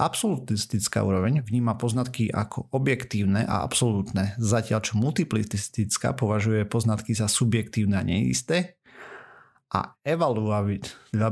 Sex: male